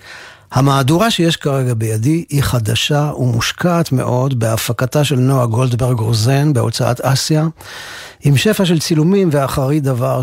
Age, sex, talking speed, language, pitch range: 50-69, male, 125 wpm, Hebrew, 125-150 Hz